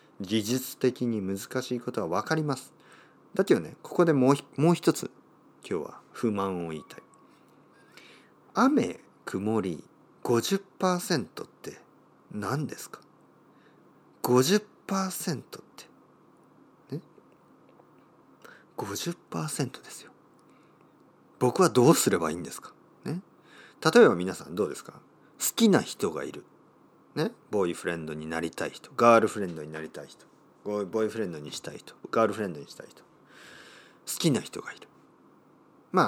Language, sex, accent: Japanese, male, native